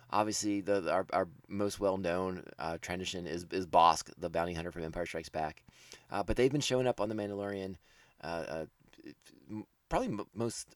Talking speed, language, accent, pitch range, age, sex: 180 wpm, English, American, 90-125 Hz, 30-49, male